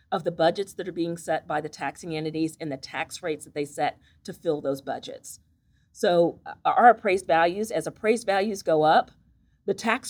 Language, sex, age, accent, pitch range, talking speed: English, female, 40-59, American, 160-210 Hz, 195 wpm